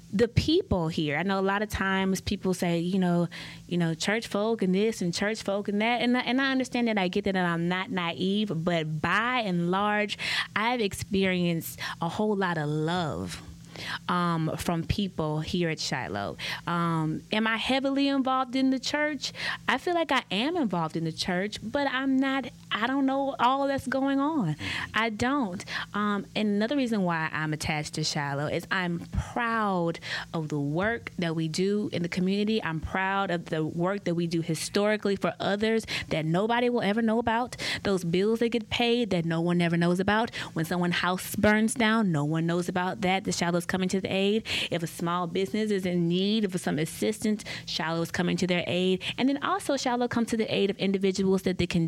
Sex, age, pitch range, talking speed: female, 20-39, 170-225 Hz, 200 wpm